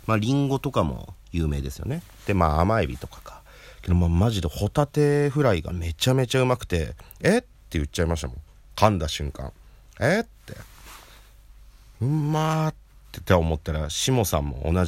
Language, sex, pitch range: Japanese, male, 75-105 Hz